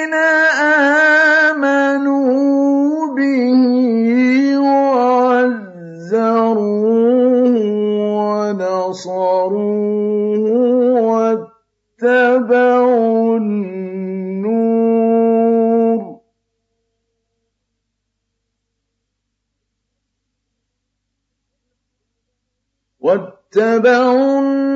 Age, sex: 50-69, male